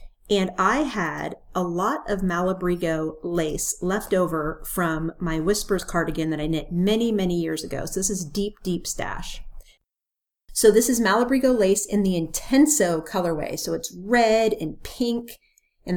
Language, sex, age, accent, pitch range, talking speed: English, female, 40-59, American, 170-215 Hz, 160 wpm